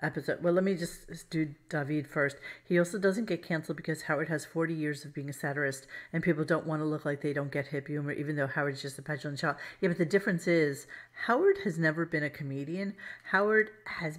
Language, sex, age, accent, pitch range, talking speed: English, female, 40-59, American, 155-195 Hz, 230 wpm